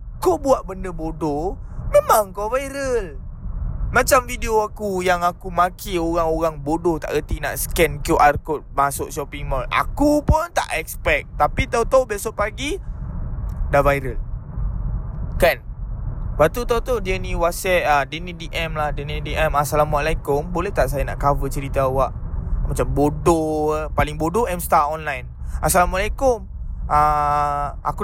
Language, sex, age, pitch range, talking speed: Malay, male, 20-39, 145-215 Hz, 135 wpm